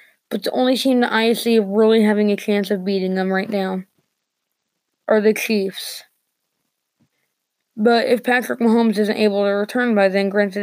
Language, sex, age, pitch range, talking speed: English, female, 20-39, 195-230 Hz, 170 wpm